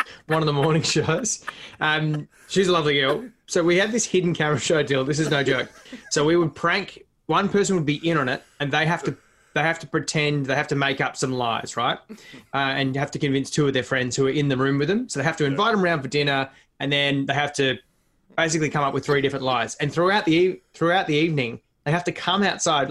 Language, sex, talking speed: English, male, 255 wpm